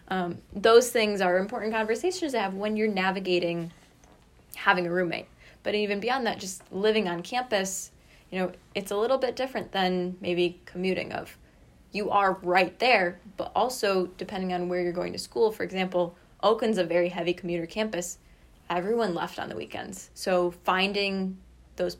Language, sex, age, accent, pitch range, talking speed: English, female, 20-39, American, 180-210 Hz, 170 wpm